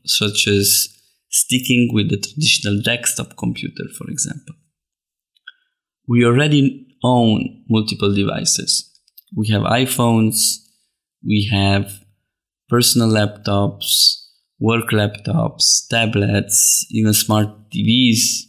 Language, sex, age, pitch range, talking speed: English, male, 20-39, 105-125 Hz, 90 wpm